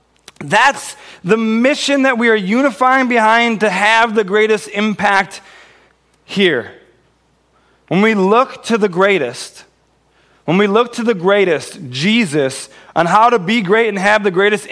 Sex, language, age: male, English, 30-49